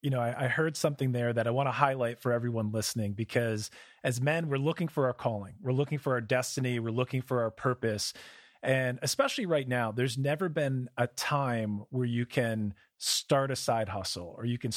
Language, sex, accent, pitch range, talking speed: English, male, American, 120-145 Hz, 205 wpm